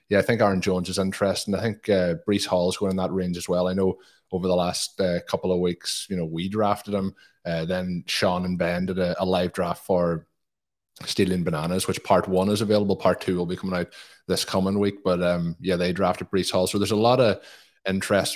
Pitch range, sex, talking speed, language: 90-100 Hz, male, 240 wpm, English